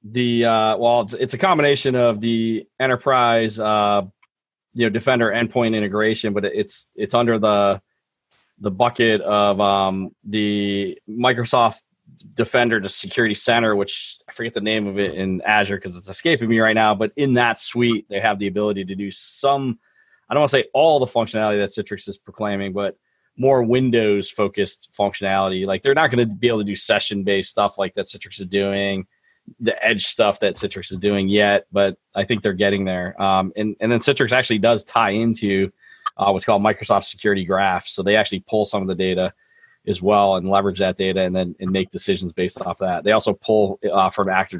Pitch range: 100-115 Hz